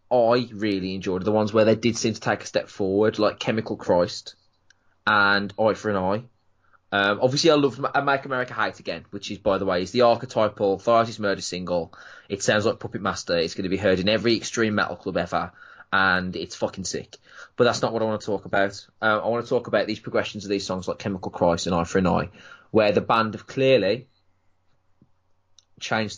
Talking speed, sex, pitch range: 220 wpm, male, 95-115 Hz